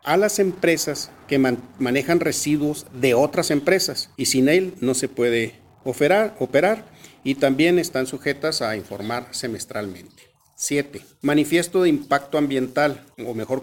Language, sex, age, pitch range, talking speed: Spanish, male, 50-69, 120-155 Hz, 140 wpm